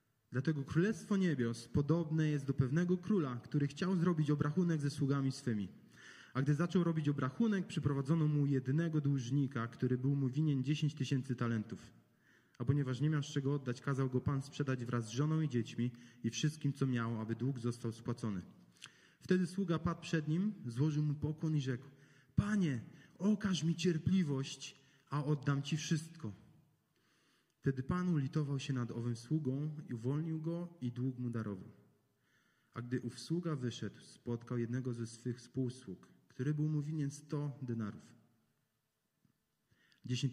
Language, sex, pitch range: Polish, male, 120-155 Hz